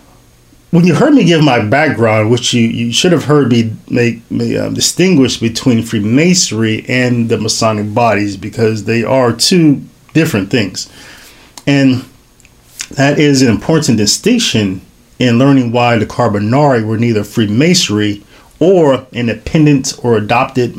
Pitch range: 105-135 Hz